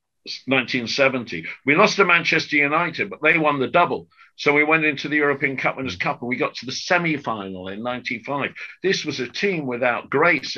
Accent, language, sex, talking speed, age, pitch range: British, English, male, 195 wpm, 50-69, 120-160 Hz